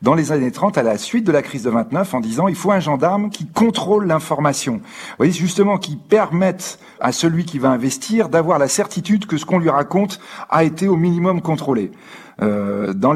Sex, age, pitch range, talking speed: male, 40-59, 140-195 Hz, 220 wpm